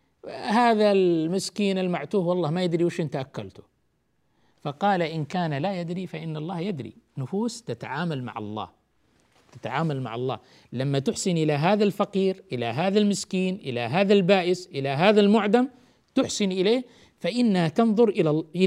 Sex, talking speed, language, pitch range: male, 140 wpm, Arabic, 145-200 Hz